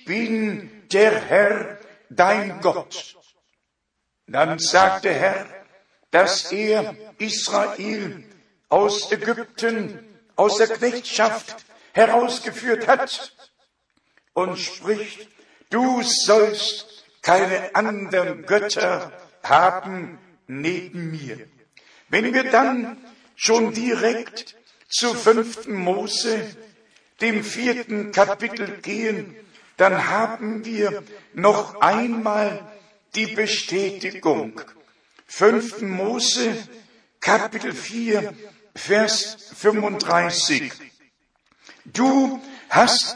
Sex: male